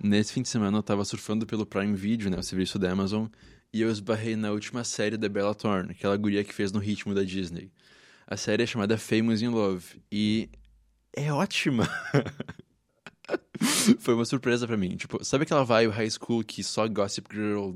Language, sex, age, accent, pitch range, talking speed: Portuguese, male, 20-39, Brazilian, 105-130 Hz, 195 wpm